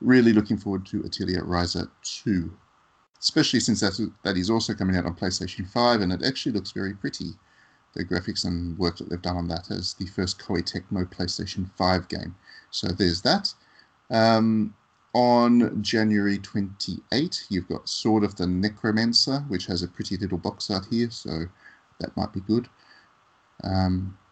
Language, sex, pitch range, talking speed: English, male, 90-110 Hz, 170 wpm